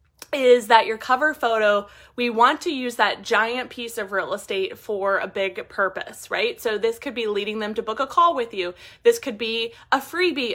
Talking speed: 210 wpm